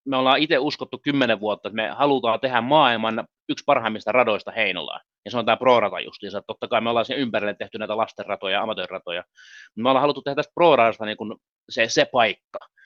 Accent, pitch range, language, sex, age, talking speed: native, 115-135 Hz, Finnish, male, 30-49, 195 wpm